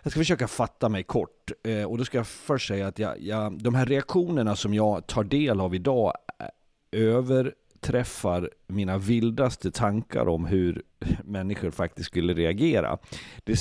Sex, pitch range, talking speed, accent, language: male, 95-120 Hz, 160 wpm, native, Swedish